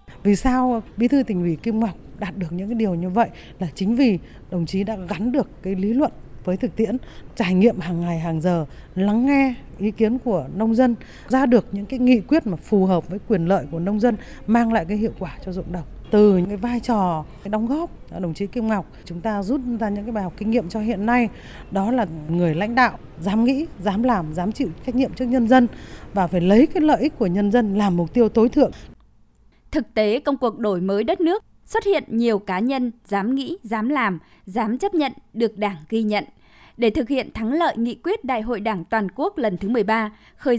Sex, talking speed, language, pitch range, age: female, 235 wpm, Vietnamese, 200-255 Hz, 20-39